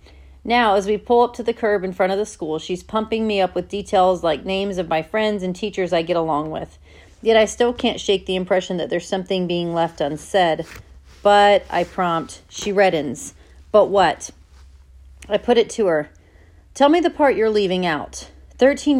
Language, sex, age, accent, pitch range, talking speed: English, female, 40-59, American, 165-210 Hz, 200 wpm